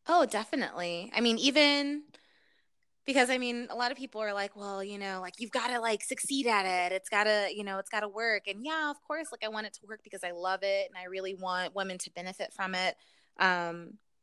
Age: 20-39